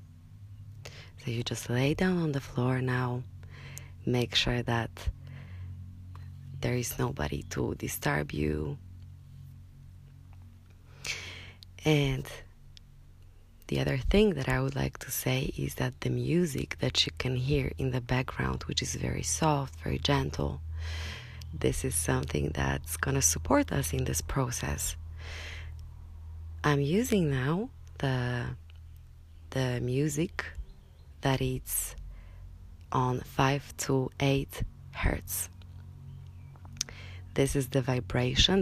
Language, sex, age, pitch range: English, female, 20-39, 80-130 Hz